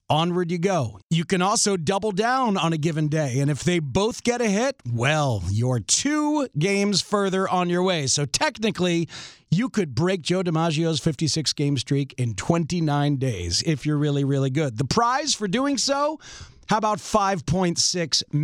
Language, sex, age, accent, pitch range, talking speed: English, male, 40-59, American, 150-200 Hz, 170 wpm